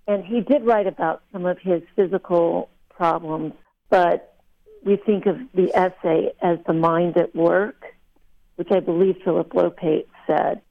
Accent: American